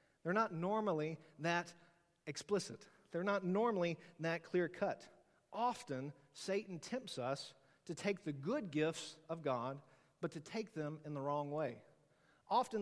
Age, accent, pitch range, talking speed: 40-59, American, 145-185 Hz, 145 wpm